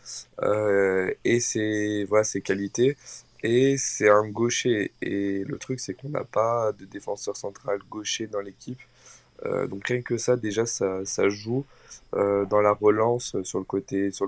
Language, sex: French, male